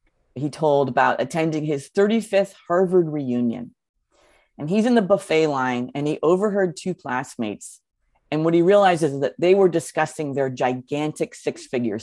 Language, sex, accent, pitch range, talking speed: English, female, American, 155-215 Hz, 155 wpm